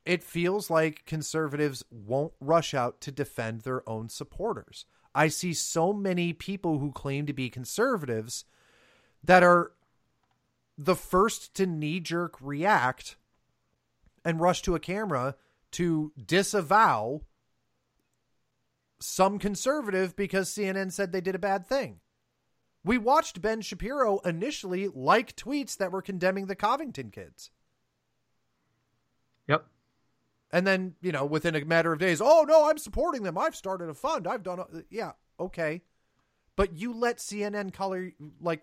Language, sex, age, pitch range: English, male, 30-49, 150-210 Hz